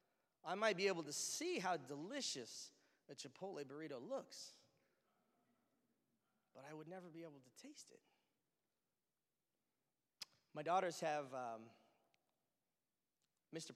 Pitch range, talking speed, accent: 135-180 Hz, 115 wpm, American